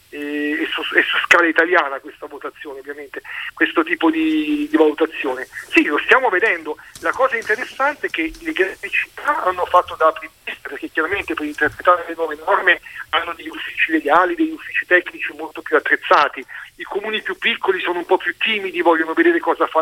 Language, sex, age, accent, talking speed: Italian, male, 50-69, native, 180 wpm